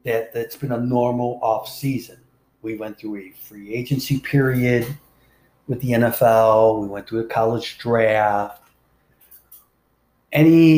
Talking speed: 135 wpm